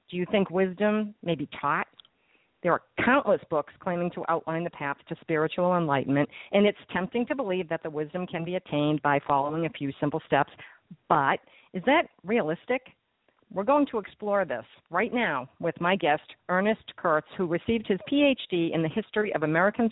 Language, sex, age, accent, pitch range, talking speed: English, female, 50-69, American, 155-195 Hz, 185 wpm